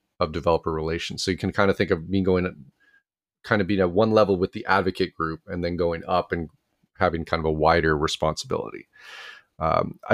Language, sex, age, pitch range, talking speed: English, male, 30-49, 85-100 Hz, 200 wpm